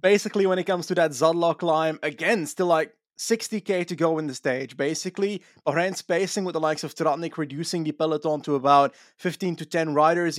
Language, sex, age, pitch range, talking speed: English, male, 20-39, 155-195 Hz, 195 wpm